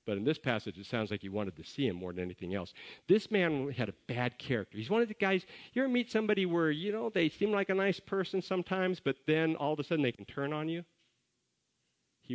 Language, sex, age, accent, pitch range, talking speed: English, male, 50-69, American, 105-155 Hz, 260 wpm